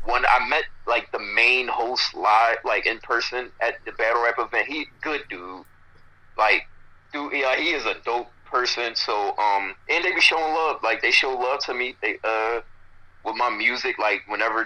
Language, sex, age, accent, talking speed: English, male, 30-49, American, 195 wpm